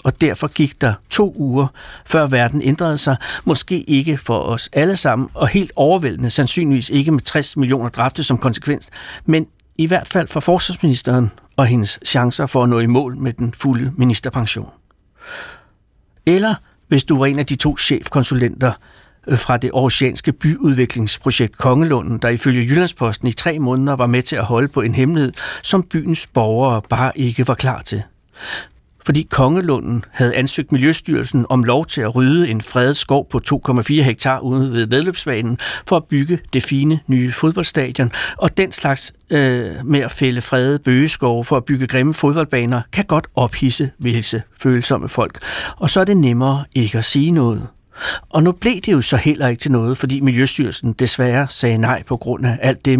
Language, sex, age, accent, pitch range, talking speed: Danish, male, 60-79, native, 125-150 Hz, 175 wpm